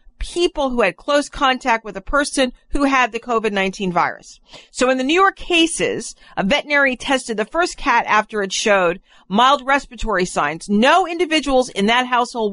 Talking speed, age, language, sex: 175 wpm, 50-69, English, female